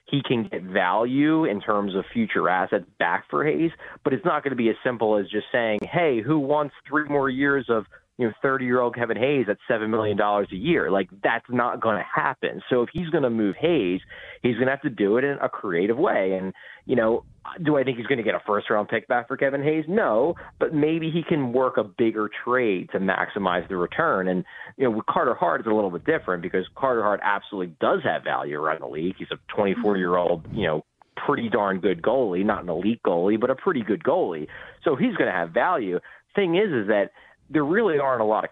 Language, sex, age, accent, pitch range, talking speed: English, male, 30-49, American, 105-135 Hz, 230 wpm